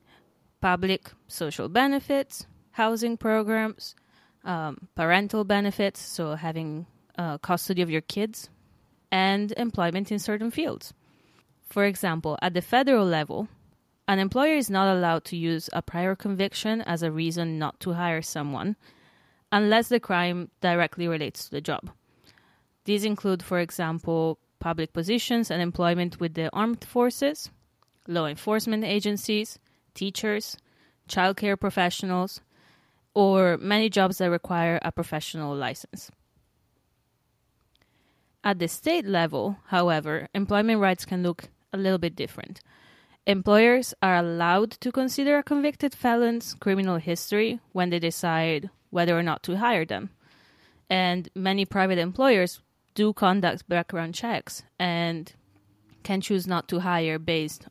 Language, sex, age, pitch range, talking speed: English, female, 20-39, 165-210 Hz, 130 wpm